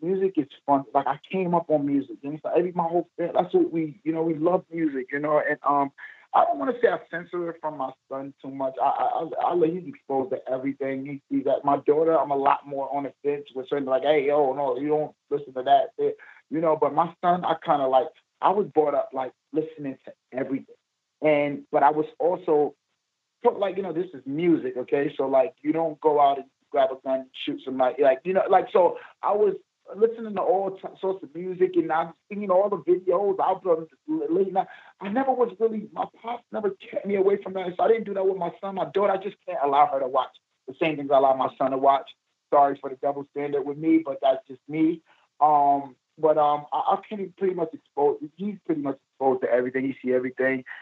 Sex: male